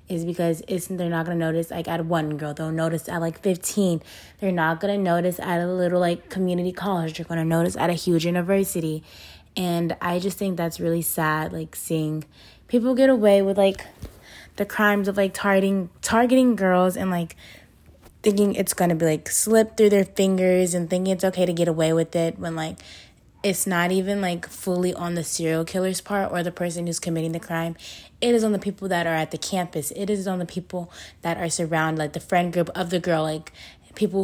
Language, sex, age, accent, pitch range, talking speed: English, female, 20-39, American, 165-190 Hz, 210 wpm